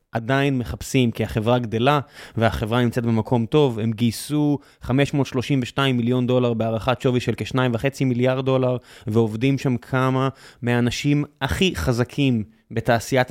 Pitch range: 120-145 Hz